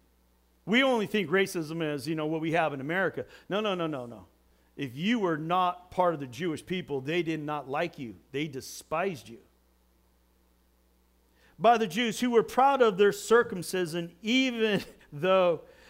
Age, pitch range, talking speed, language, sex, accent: 50-69, 135-210 Hz, 170 wpm, English, male, American